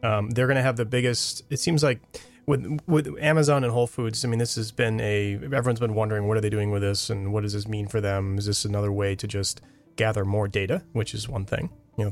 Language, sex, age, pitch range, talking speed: English, male, 30-49, 100-120 Hz, 260 wpm